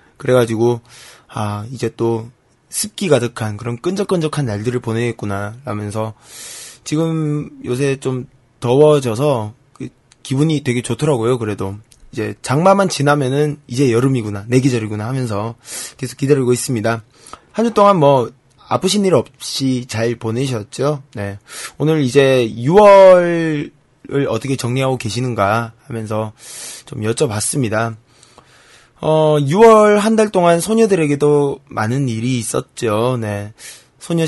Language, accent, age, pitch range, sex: Korean, native, 20-39, 115-150 Hz, male